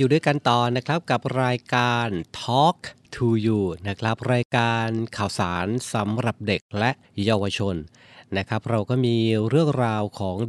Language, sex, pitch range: Thai, male, 105-135 Hz